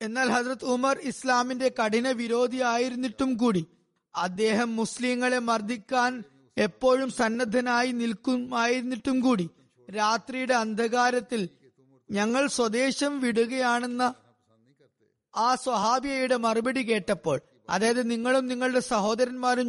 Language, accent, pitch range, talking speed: Malayalam, native, 220-250 Hz, 85 wpm